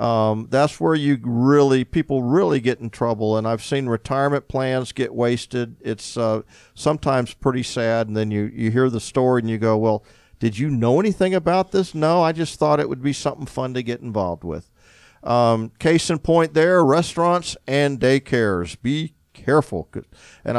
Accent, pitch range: American, 110-140 Hz